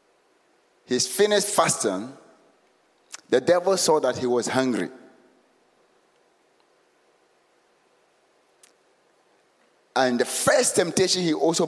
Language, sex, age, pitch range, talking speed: English, male, 60-79, 140-205 Hz, 80 wpm